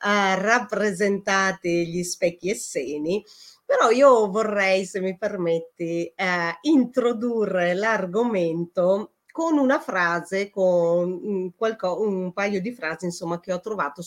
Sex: female